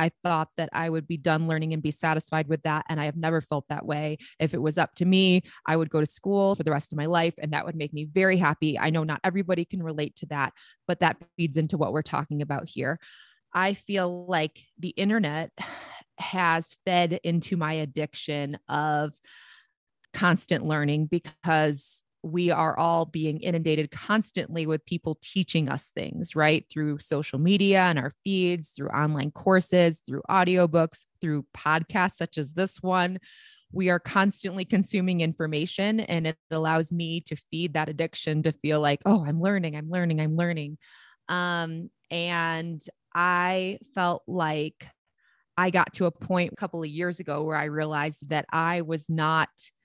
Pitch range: 155-180 Hz